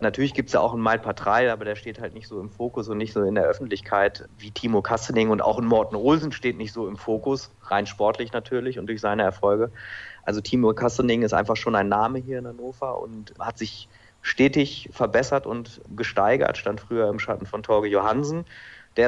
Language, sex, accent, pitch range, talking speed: German, male, German, 110-125 Hz, 210 wpm